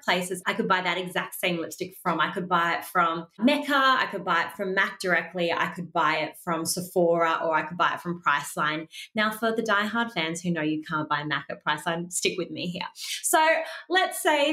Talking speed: 225 wpm